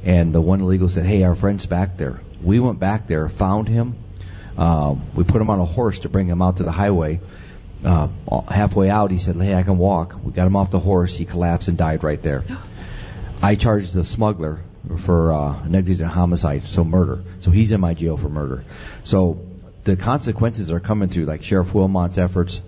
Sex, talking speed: male, 205 wpm